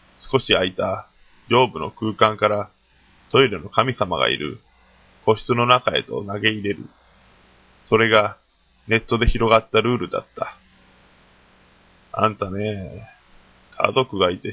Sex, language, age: male, Japanese, 20-39